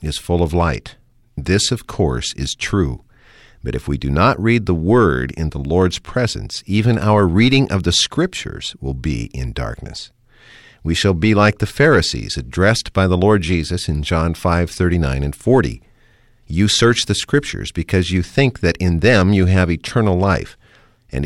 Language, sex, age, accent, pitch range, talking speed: English, male, 50-69, American, 80-110 Hz, 180 wpm